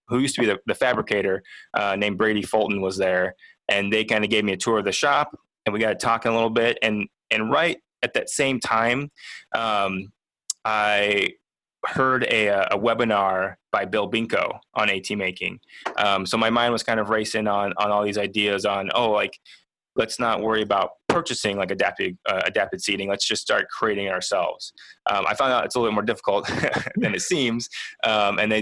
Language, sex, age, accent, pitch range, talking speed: English, male, 20-39, American, 100-110 Hz, 205 wpm